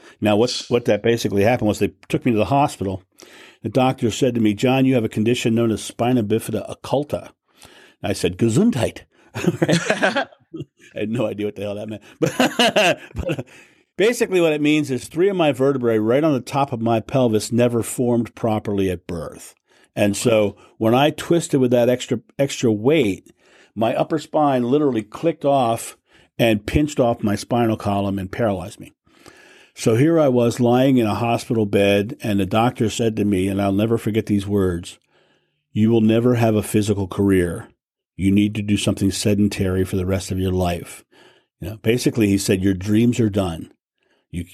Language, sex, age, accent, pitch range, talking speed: English, male, 50-69, American, 100-125 Hz, 185 wpm